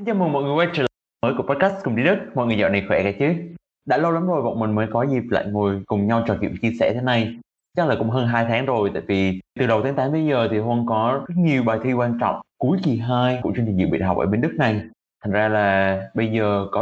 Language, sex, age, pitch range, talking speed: Vietnamese, male, 20-39, 105-130 Hz, 295 wpm